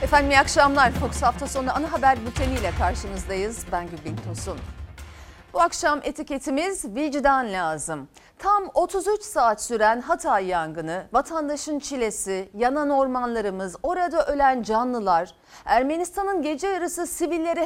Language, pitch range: Turkish, 210-305 Hz